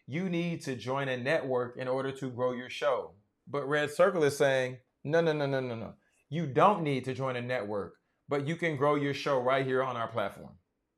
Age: 30-49